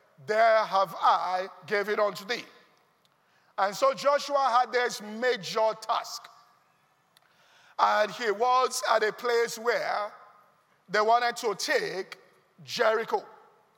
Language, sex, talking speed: English, male, 110 wpm